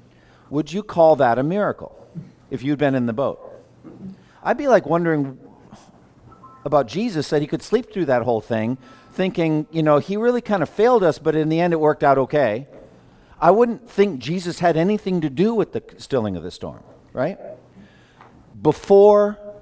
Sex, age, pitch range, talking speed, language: male, 50-69, 130-180 Hz, 180 wpm, English